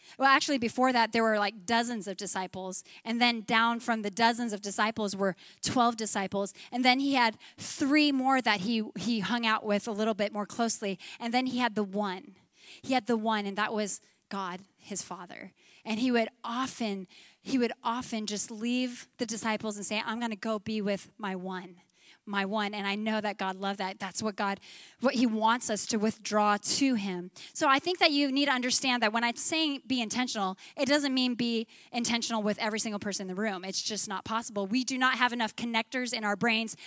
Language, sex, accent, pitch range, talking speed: English, female, American, 205-250 Hz, 220 wpm